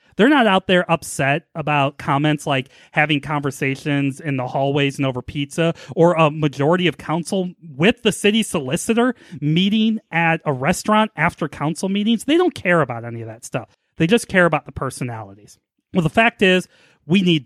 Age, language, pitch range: 30-49, English, 135-185 Hz